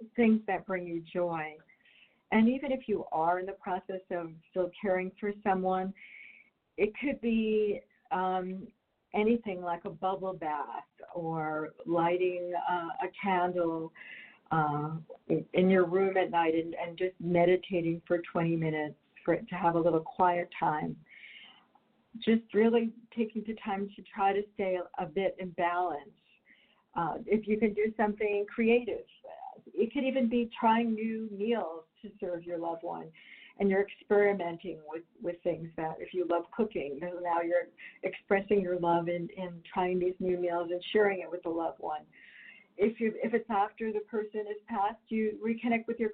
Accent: American